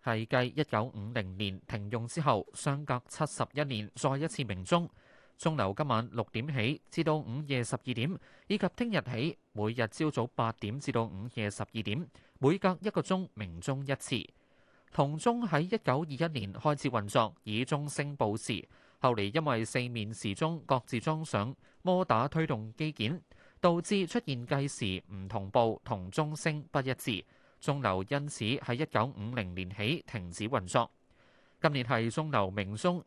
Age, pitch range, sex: 20-39, 110-155 Hz, male